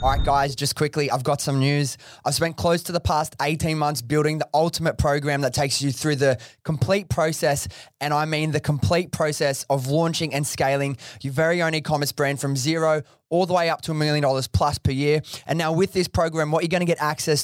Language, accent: English, Australian